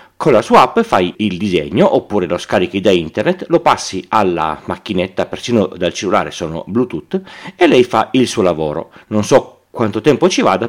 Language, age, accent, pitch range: Italian, 40-59, native, 95-125 Hz